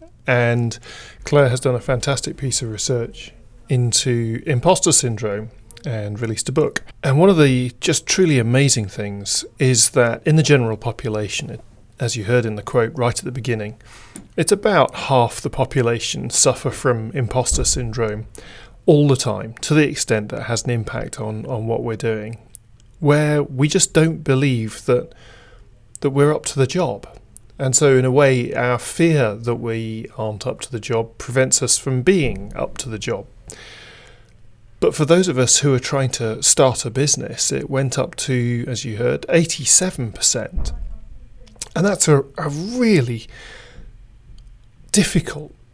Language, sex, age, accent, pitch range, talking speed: English, male, 30-49, British, 115-140 Hz, 165 wpm